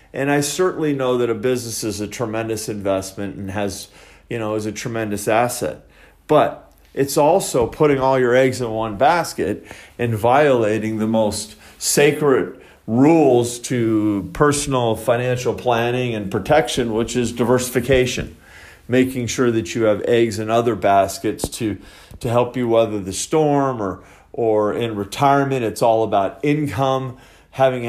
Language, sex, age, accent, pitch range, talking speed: English, male, 40-59, American, 110-130 Hz, 150 wpm